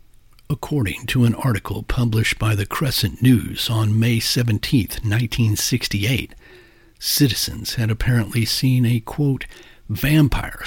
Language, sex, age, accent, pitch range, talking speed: English, male, 60-79, American, 105-125 Hz, 110 wpm